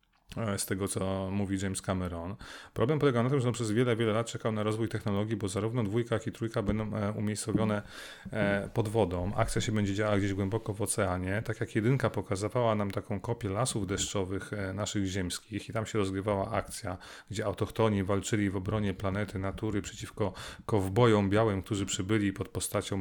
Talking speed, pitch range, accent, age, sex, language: 175 wpm, 100-115 Hz, native, 30-49, male, Polish